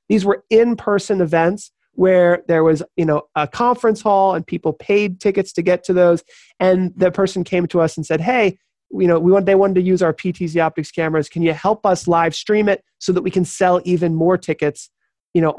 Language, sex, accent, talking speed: English, male, American, 225 wpm